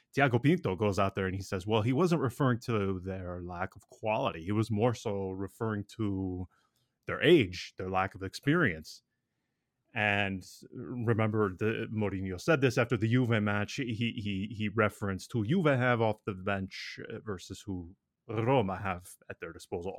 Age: 20-39